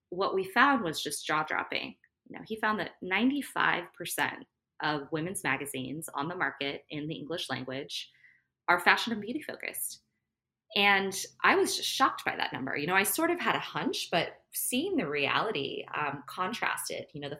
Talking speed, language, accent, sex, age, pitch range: 175 wpm, English, American, female, 20-39, 140-220 Hz